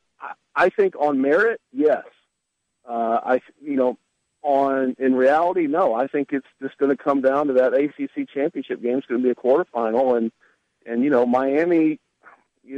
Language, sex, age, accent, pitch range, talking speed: English, male, 50-69, American, 125-150 Hz, 180 wpm